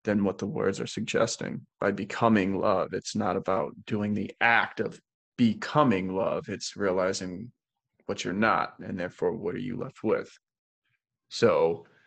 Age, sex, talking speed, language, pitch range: 20-39, male, 155 wpm, English, 105-125 Hz